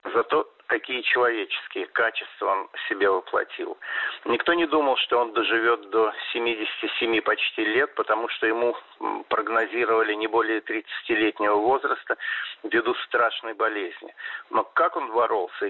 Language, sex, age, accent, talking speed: Russian, male, 50-69, native, 125 wpm